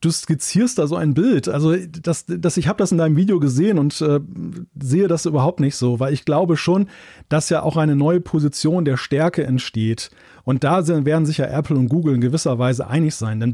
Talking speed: 225 wpm